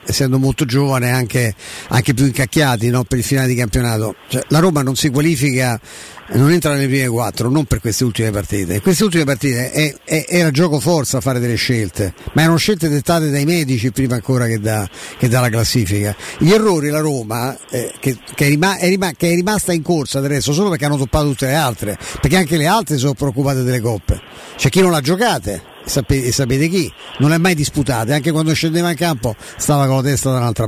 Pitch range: 130-170 Hz